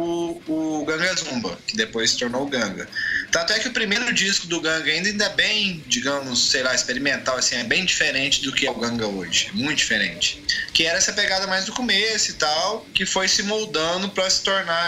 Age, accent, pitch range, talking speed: 20-39, Brazilian, 130-185 Hz, 215 wpm